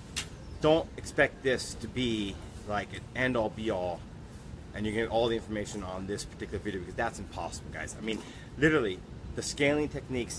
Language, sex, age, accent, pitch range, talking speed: English, male, 30-49, American, 105-130 Hz, 170 wpm